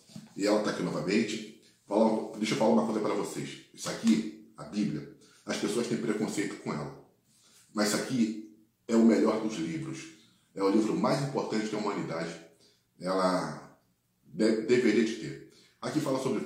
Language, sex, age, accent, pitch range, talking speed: Portuguese, male, 40-59, Brazilian, 95-130 Hz, 170 wpm